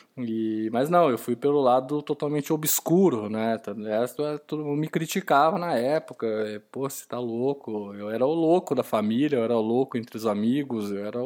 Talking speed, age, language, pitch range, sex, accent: 185 wpm, 20-39, Portuguese, 120-175 Hz, male, Brazilian